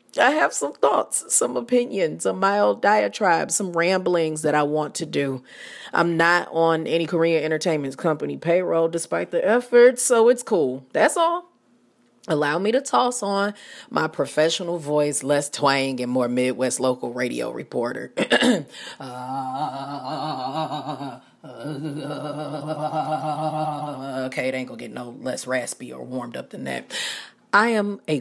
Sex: female